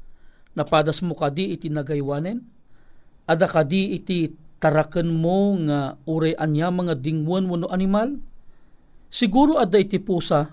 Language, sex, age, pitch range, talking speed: Filipino, male, 50-69, 155-210 Hz, 115 wpm